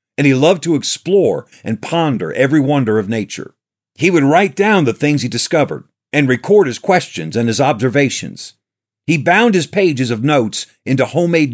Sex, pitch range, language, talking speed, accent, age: male, 120-165 Hz, English, 175 wpm, American, 50-69